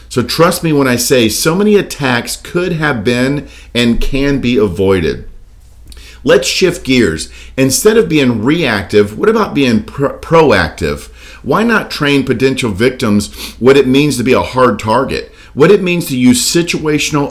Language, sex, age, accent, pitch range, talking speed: English, male, 50-69, American, 105-140 Hz, 165 wpm